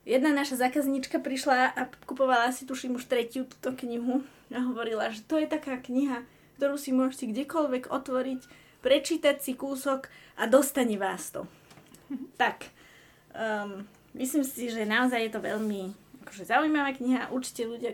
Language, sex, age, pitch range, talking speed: Slovak, female, 20-39, 200-255 Hz, 150 wpm